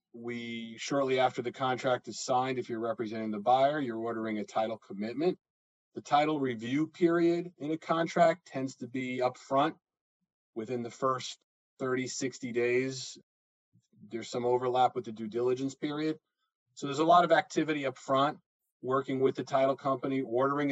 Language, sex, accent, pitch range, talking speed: English, male, American, 120-140 Hz, 165 wpm